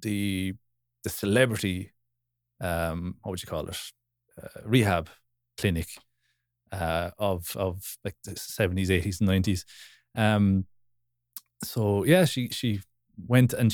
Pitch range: 100-120 Hz